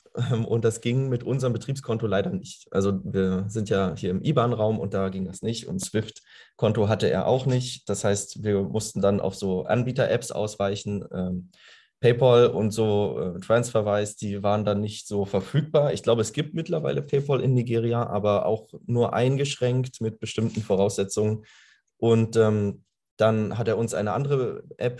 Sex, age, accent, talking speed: male, 20-39, German, 165 wpm